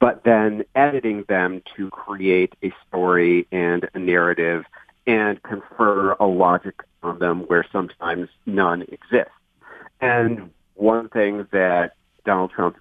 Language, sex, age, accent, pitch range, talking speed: English, male, 40-59, American, 90-110 Hz, 125 wpm